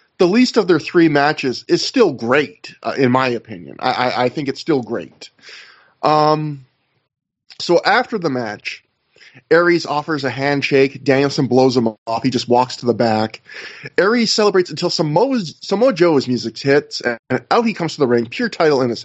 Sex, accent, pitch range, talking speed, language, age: male, American, 130-175 Hz, 180 wpm, English, 20-39